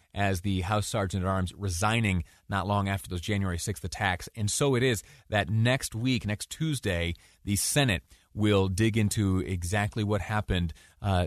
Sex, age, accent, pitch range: male, 30-49, American, 95-135 Hz